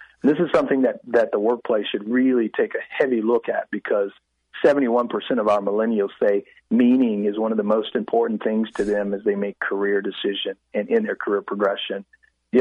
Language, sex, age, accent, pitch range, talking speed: English, male, 40-59, American, 105-140 Hz, 195 wpm